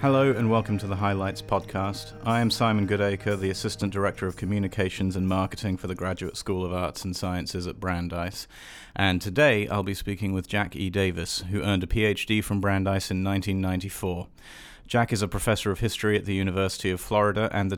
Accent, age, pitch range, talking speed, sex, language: British, 40-59, 95-105 Hz, 195 wpm, male, English